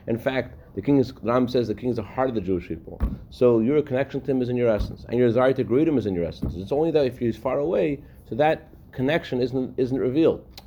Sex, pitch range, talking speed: male, 95-130 Hz, 270 wpm